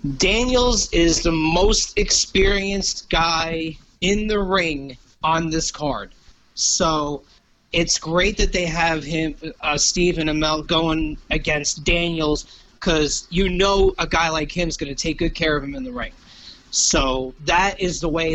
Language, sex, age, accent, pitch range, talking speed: English, male, 30-49, American, 150-180 Hz, 160 wpm